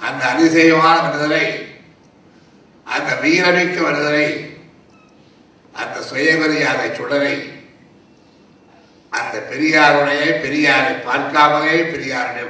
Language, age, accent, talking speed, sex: Tamil, 60-79, native, 65 wpm, male